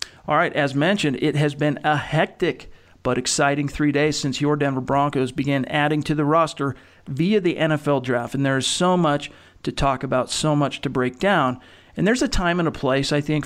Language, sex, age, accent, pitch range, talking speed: English, male, 40-59, American, 130-155 Hz, 215 wpm